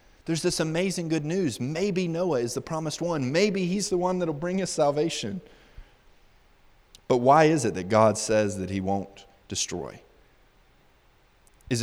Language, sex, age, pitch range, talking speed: English, male, 30-49, 100-125 Hz, 160 wpm